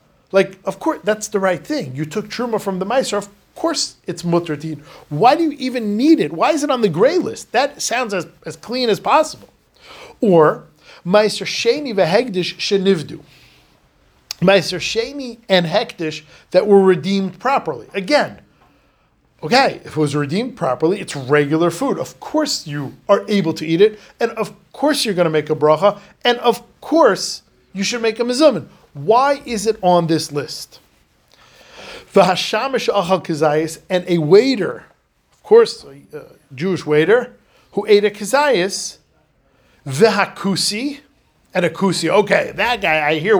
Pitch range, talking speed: 160-225 Hz, 150 wpm